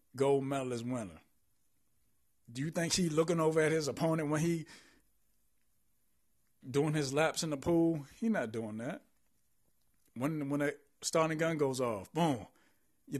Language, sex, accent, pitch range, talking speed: English, male, American, 120-155 Hz, 155 wpm